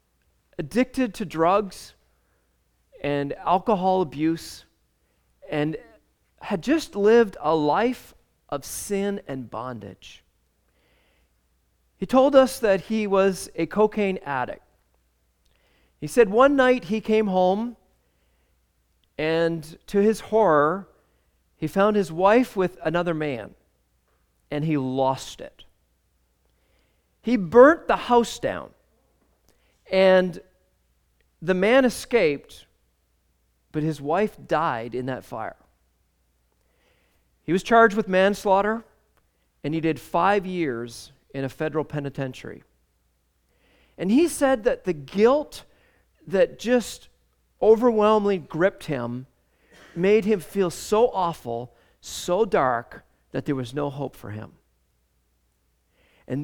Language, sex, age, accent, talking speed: English, male, 40-59, American, 110 wpm